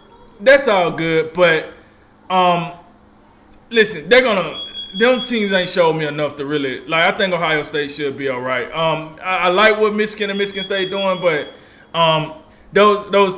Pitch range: 165-240 Hz